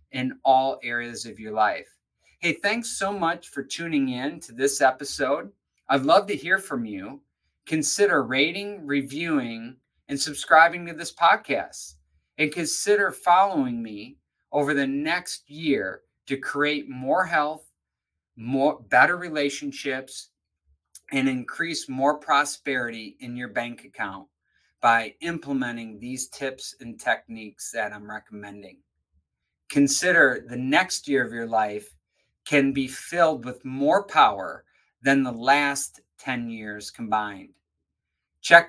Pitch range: 110-150 Hz